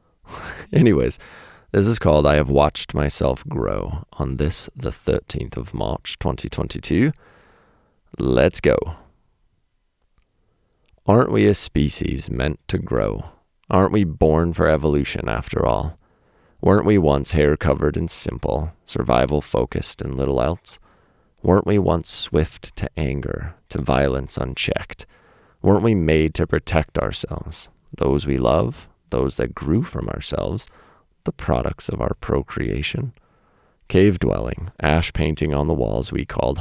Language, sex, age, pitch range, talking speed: English, male, 30-49, 70-95 Hz, 135 wpm